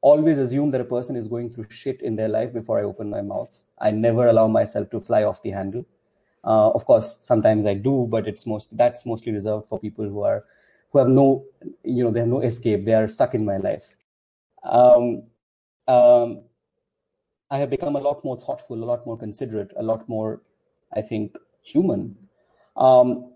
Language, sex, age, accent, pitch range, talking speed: English, male, 30-49, Indian, 110-130 Hz, 200 wpm